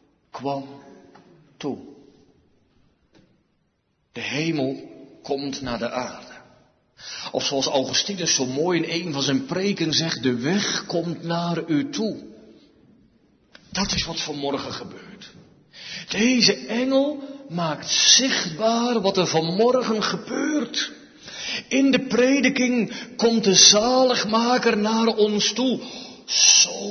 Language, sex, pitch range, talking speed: Dutch, male, 155-235 Hz, 105 wpm